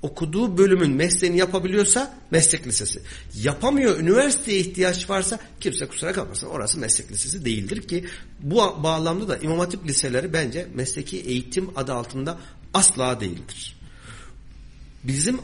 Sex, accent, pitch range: male, native, 125-175 Hz